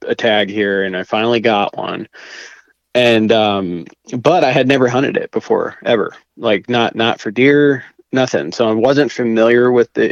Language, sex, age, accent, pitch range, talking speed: English, male, 20-39, American, 105-115 Hz, 180 wpm